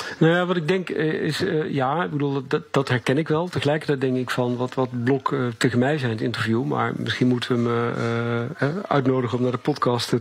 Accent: Dutch